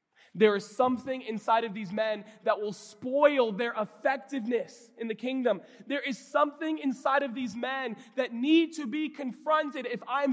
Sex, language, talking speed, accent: male, English, 170 wpm, American